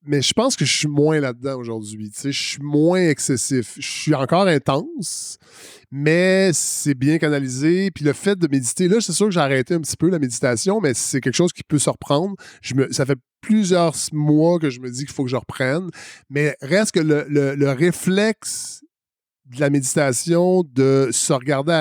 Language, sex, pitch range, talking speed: English, male, 135-170 Hz, 205 wpm